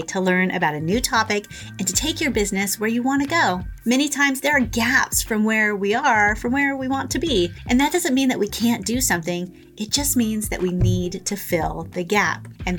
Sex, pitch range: female, 190-280 Hz